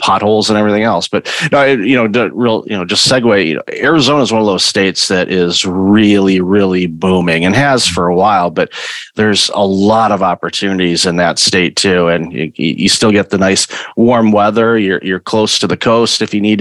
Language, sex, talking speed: English, male, 210 wpm